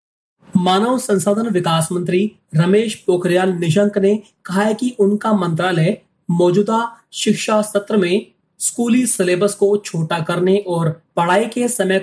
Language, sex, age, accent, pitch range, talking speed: Hindi, male, 30-49, native, 175-205 Hz, 130 wpm